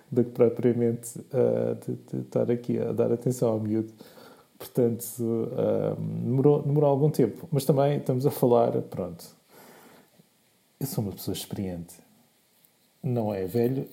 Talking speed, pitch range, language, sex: 145 wpm, 105-130 Hz, Portuguese, male